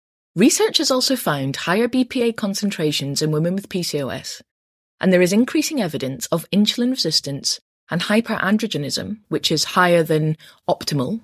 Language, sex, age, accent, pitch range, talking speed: English, female, 20-39, British, 150-215 Hz, 140 wpm